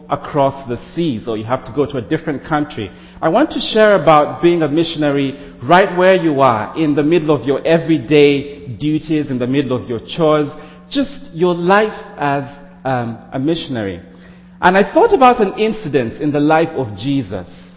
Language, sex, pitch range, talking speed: English, male, 130-180 Hz, 185 wpm